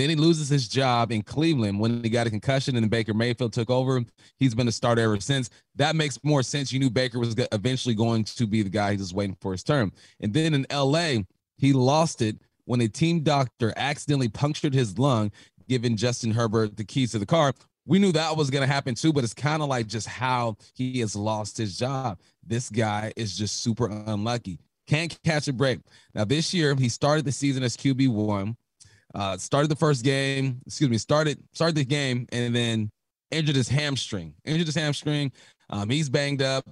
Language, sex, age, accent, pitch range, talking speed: English, male, 30-49, American, 110-140 Hz, 210 wpm